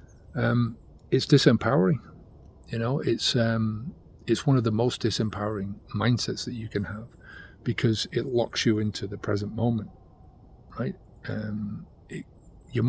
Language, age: English, 40-59